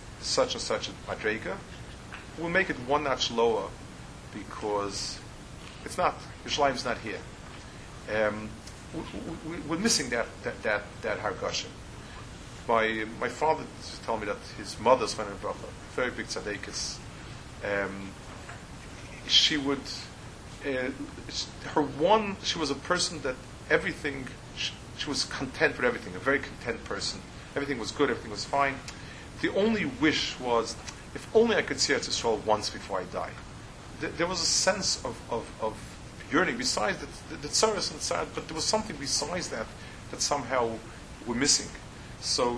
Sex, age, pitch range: male, 40-59, 115-150 Hz